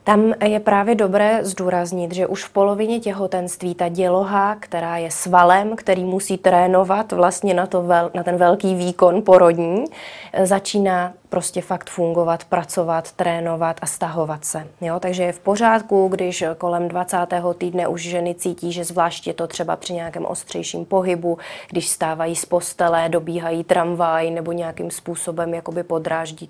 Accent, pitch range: native, 170-185 Hz